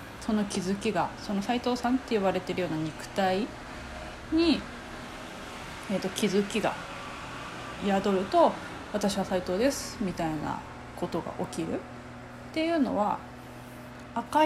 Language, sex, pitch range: Japanese, female, 180-250 Hz